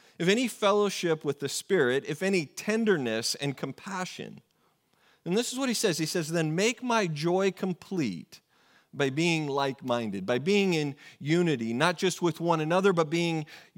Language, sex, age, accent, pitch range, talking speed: English, male, 40-59, American, 150-190 Hz, 165 wpm